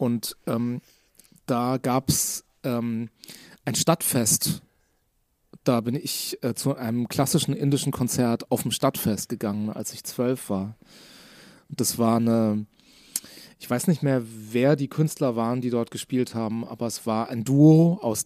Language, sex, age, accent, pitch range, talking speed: German, male, 30-49, German, 115-140 Hz, 150 wpm